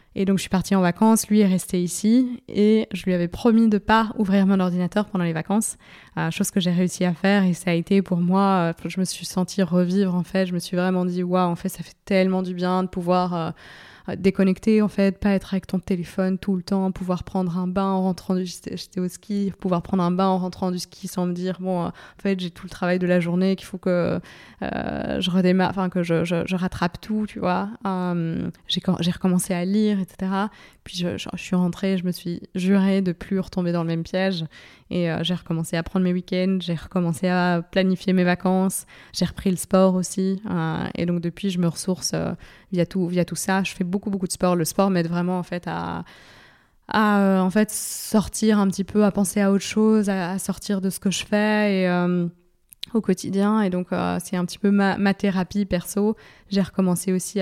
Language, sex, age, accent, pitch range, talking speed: French, female, 20-39, French, 180-195 Hz, 230 wpm